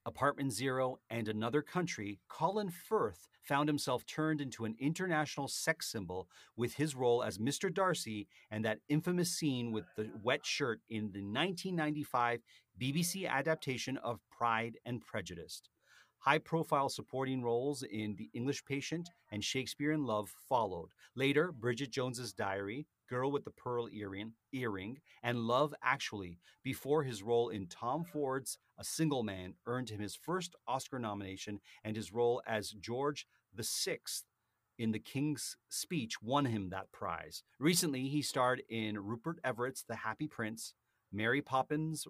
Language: English